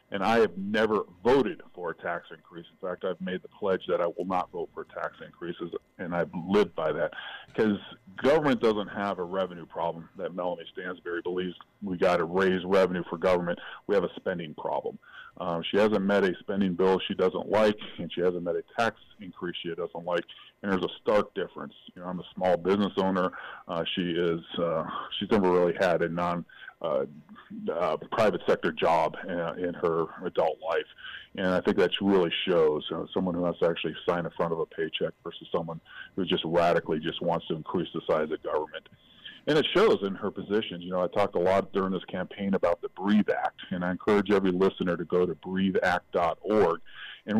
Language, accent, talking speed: English, American, 210 wpm